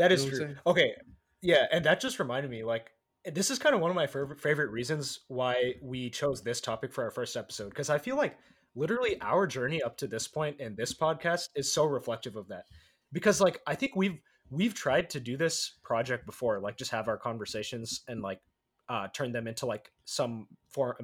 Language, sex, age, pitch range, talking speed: English, male, 20-39, 120-155 Hz, 215 wpm